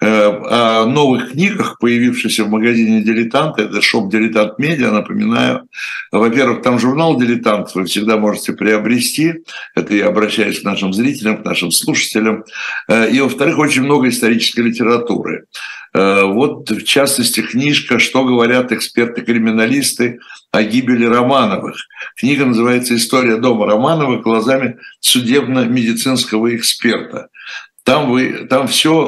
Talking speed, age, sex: 115 wpm, 60-79, male